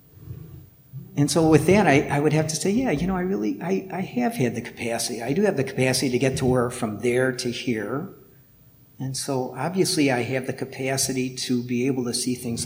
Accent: American